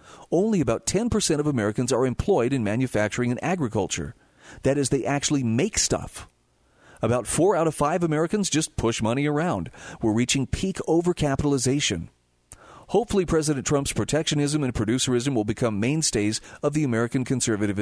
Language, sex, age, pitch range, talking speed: English, male, 40-59, 105-155 Hz, 150 wpm